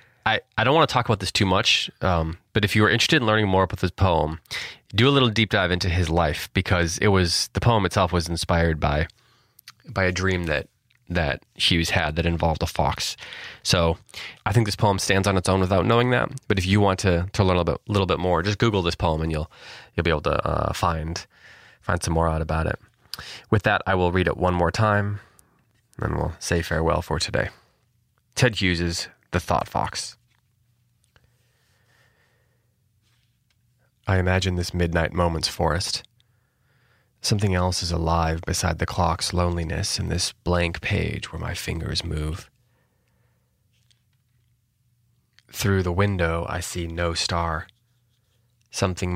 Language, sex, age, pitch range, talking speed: English, male, 20-39, 85-115 Hz, 175 wpm